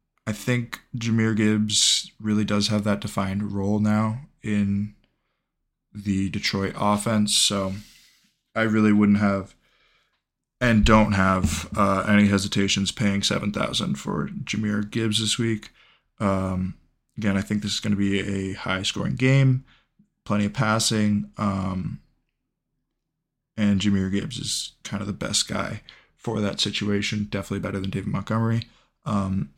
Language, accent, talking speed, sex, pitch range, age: English, American, 140 wpm, male, 100-115 Hz, 20-39